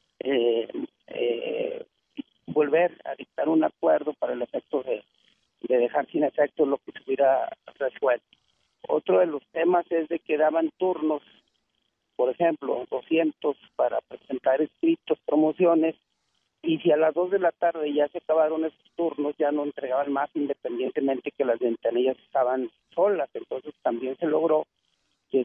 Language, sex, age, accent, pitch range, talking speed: Spanish, male, 50-69, Mexican, 130-165 Hz, 150 wpm